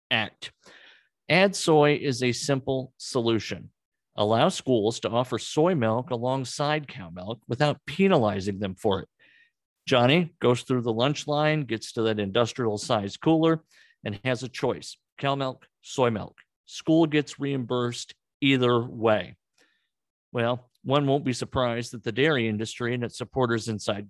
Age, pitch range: 50-69, 115-145 Hz